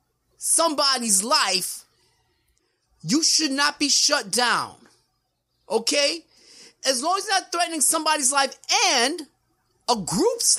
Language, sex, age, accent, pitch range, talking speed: English, male, 30-49, American, 225-300 Hz, 110 wpm